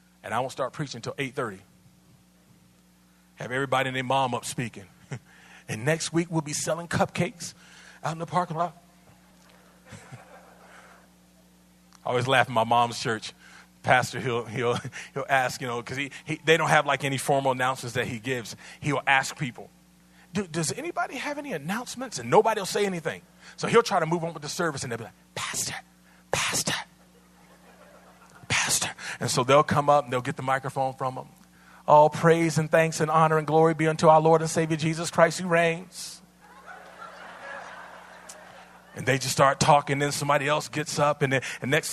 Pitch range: 120-165 Hz